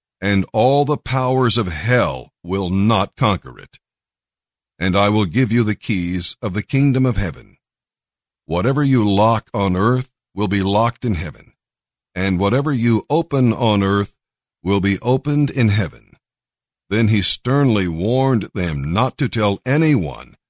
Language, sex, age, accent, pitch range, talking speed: English, male, 50-69, American, 100-125 Hz, 150 wpm